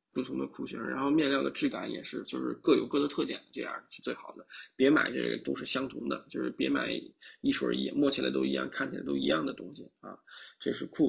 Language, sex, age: Chinese, male, 20-39